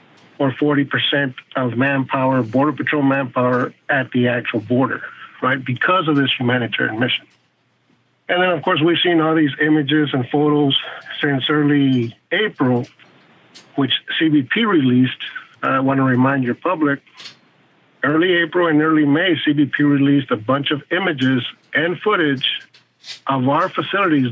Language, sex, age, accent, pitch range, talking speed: English, male, 50-69, American, 130-155 Hz, 140 wpm